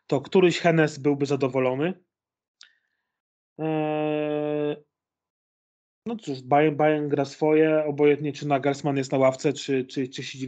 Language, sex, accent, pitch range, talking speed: Polish, male, native, 140-160 Hz, 130 wpm